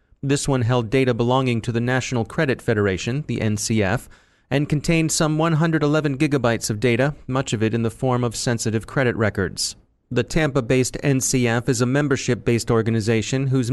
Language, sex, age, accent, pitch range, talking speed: English, male, 30-49, American, 115-145 Hz, 160 wpm